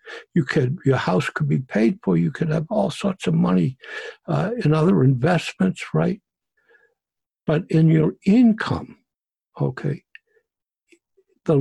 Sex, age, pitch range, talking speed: male, 60-79, 130-195 Hz, 135 wpm